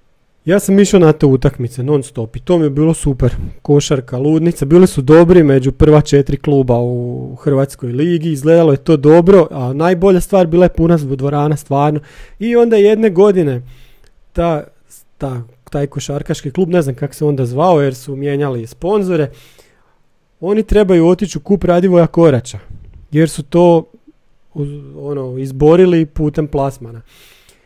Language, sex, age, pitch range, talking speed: Croatian, male, 40-59, 140-175 Hz, 155 wpm